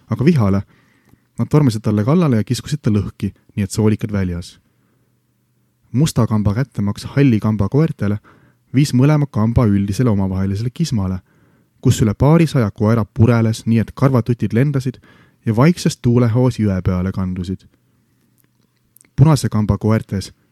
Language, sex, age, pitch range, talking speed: English, male, 30-49, 100-130 Hz, 125 wpm